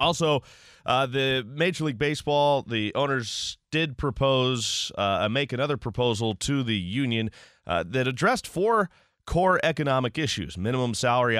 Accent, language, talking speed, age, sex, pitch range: American, English, 135 wpm, 30-49, male, 100-135 Hz